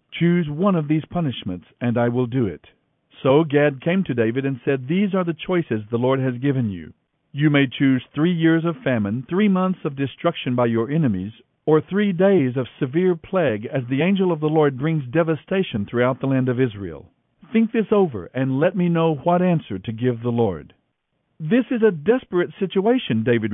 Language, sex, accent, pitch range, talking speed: English, male, American, 120-180 Hz, 200 wpm